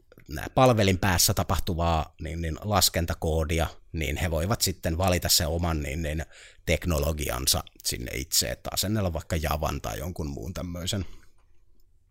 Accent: native